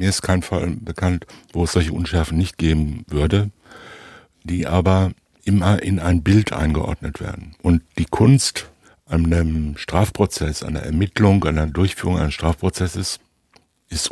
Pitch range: 80-100 Hz